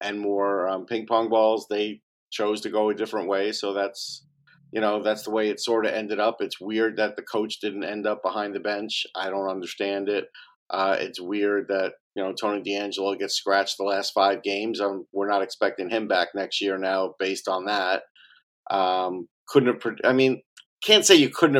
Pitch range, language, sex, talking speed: 100-125 Hz, English, male, 210 wpm